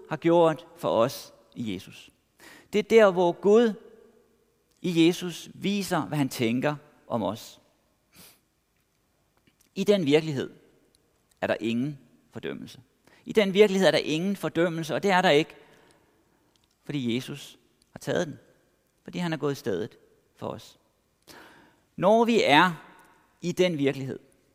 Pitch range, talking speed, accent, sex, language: 150-200 Hz, 140 wpm, native, male, Danish